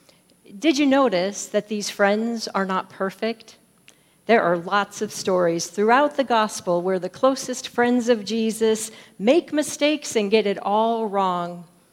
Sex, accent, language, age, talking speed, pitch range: female, American, English, 40-59, 150 wpm, 195-240 Hz